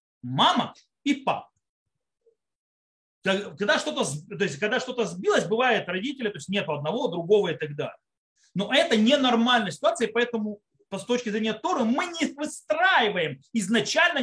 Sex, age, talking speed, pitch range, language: male, 30-49, 145 wpm, 185-250 Hz, Russian